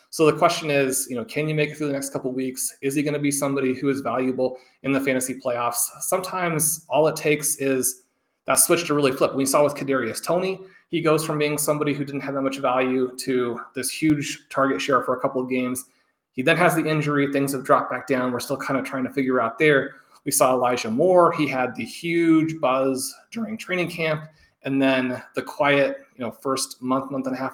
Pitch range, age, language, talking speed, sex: 130-155 Hz, 30-49, English, 235 wpm, male